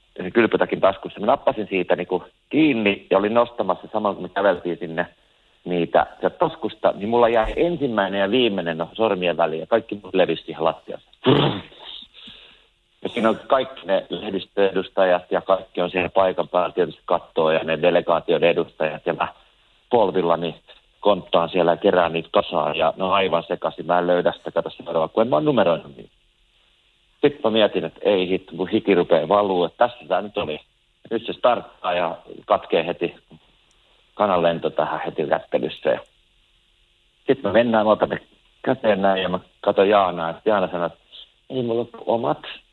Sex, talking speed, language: male, 155 wpm, Finnish